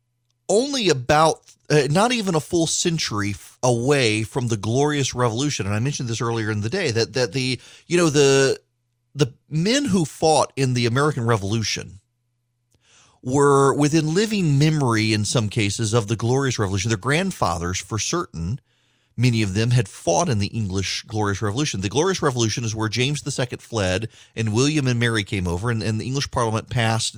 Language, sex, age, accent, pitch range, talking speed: English, male, 30-49, American, 110-145 Hz, 180 wpm